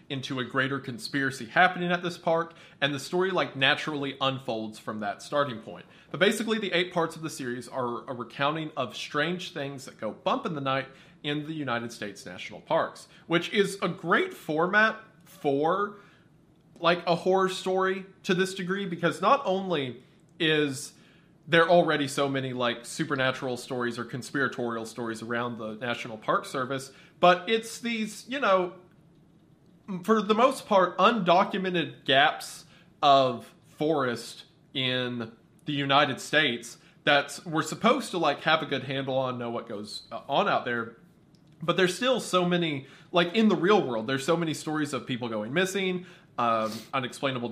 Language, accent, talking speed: English, American, 165 wpm